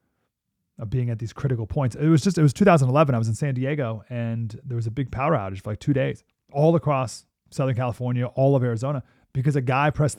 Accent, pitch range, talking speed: American, 115-155 Hz, 230 wpm